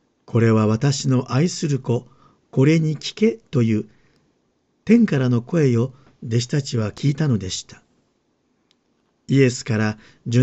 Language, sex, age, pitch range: Japanese, male, 50-69, 120-160 Hz